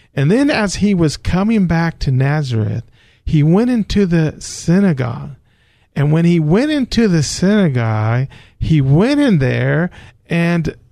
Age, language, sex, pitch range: 50-69, English, male, 130-185 Hz